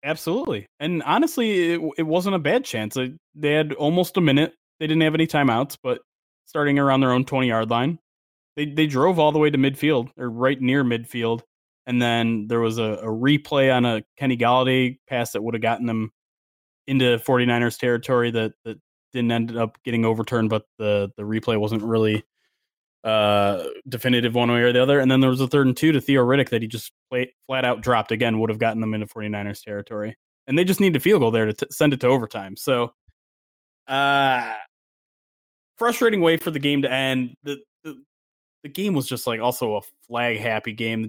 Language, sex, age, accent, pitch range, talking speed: English, male, 20-39, American, 110-140 Hz, 200 wpm